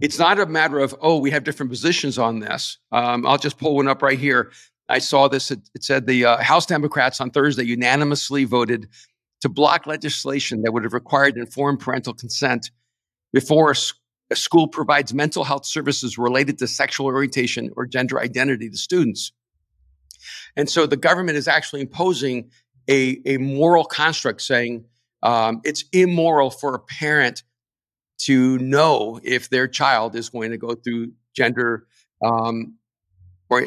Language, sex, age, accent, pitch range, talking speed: English, male, 50-69, American, 120-145 Hz, 165 wpm